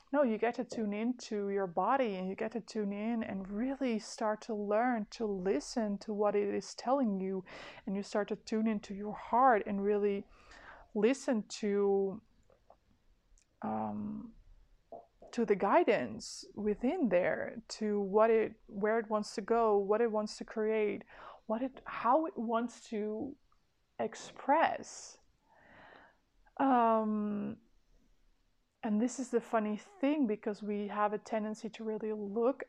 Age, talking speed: 20-39, 145 wpm